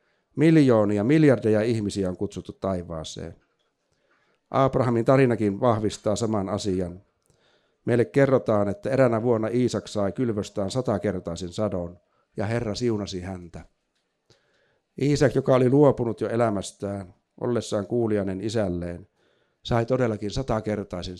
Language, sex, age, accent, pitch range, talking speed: Finnish, male, 60-79, native, 95-120 Hz, 105 wpm